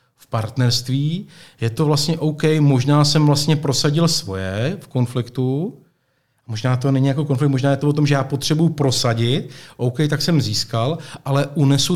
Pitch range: 125-150 Hz